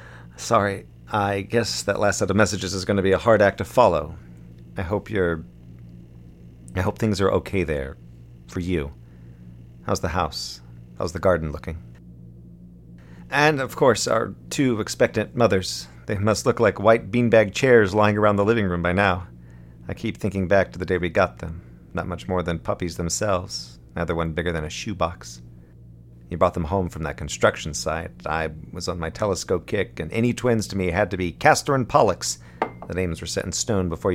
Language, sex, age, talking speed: English, male, 40-59, 195 wpm